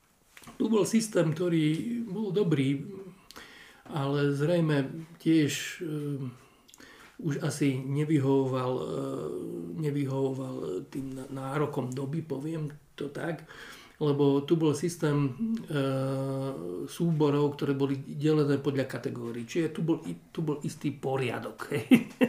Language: Slovak